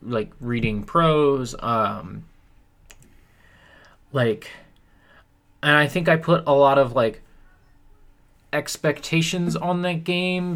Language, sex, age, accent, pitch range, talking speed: English, male, 20-39, American, 130-180 Hz, 100 wpm